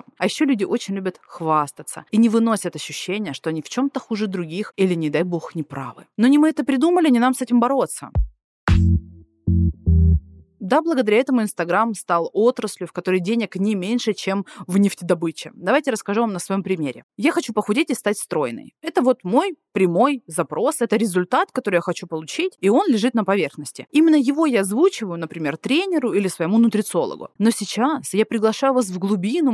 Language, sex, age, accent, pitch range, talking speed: Russian, female, 20-39, native, 180-255 Hz, 185 wpm